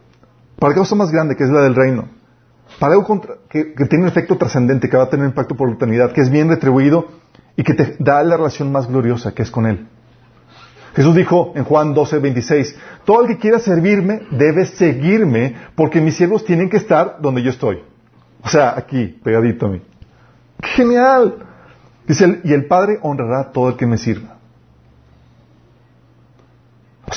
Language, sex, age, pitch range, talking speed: Spanish, male, 40-59, 125-165 Hz, 190 wpm